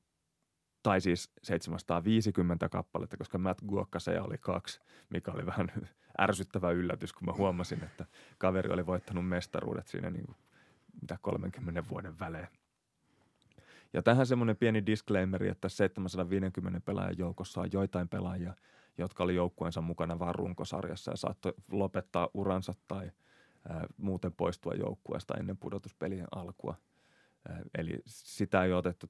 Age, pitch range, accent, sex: 30-49, 90-100 Hz, native, male